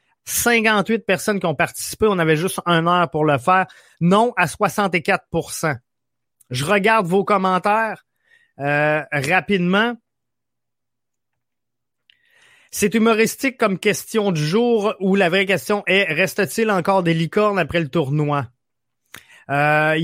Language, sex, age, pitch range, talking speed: French, male, 30-49, 160-200 Hz, 125 wpm